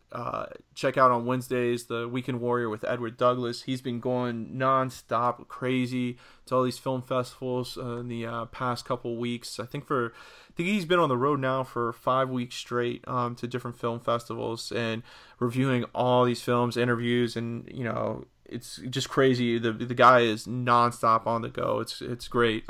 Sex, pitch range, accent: male, 120-125 Hz, American